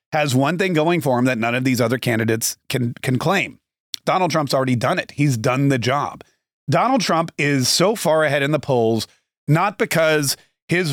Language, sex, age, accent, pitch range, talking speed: English, male, 30-49, American, 130-165 Hz, 200 wpm